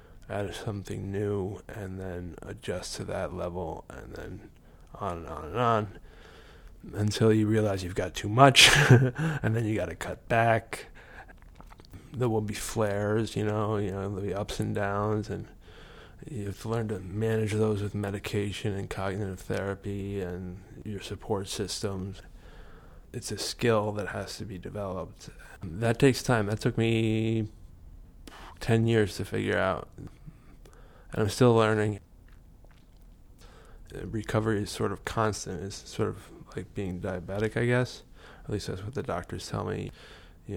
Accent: American